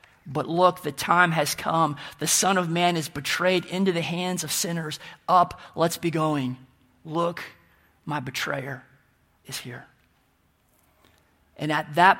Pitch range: 155-185 Hz